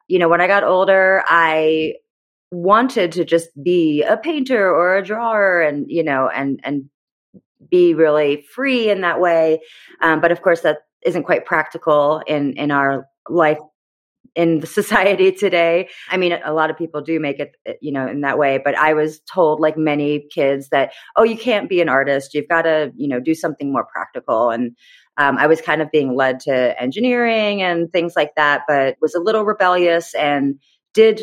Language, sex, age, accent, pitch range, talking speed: English, female, 30-49, American, 145-180 Hz, 195 wpm